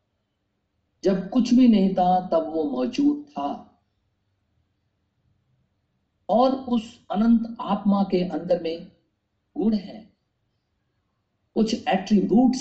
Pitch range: 175-245 Hz